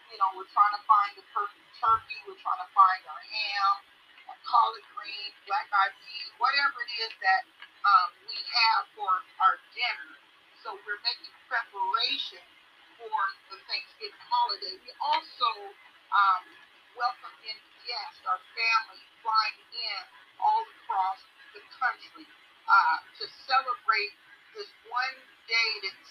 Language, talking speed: English, 135 wpm